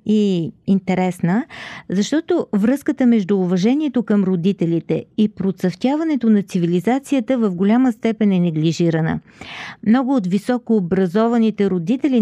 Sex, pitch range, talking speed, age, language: female, 180-240 Hz, 105 wpm, 40-59, Bulgarian